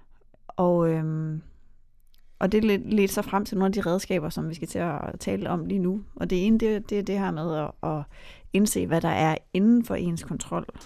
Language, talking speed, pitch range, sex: Danish, 220 wpm, 170-215 Hz, female